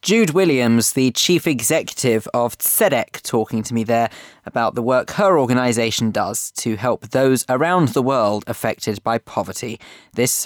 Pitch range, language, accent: 115-155 Hz, English, British